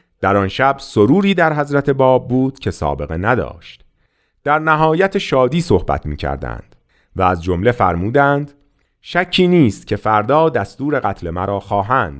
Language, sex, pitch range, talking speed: Persian, male, 90-130 Hz, 140 wpm